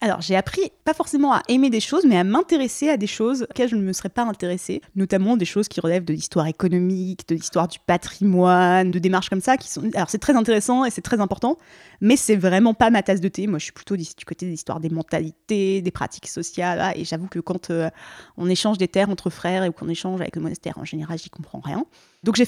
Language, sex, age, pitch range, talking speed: French, female, 20-39, 185-245 Hz, 250 wpm